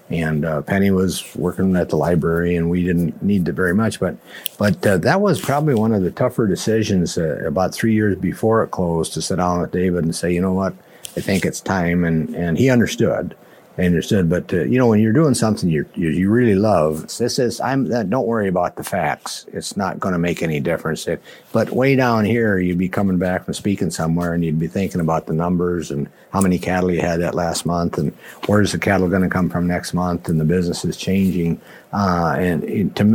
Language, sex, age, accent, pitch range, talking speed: English, male, 50-69, American, 85-105 Hz, 230 wpm